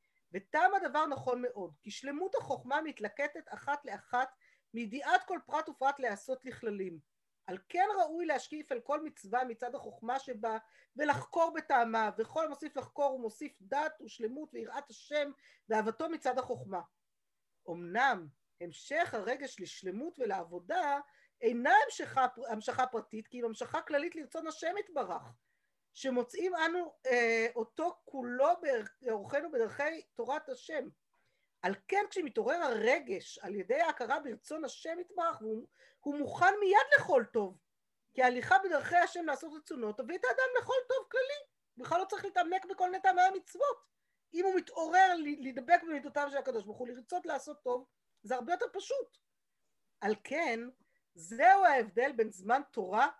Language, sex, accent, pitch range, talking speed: Hebrew, female, native, 240-335 Hz, 140 wpm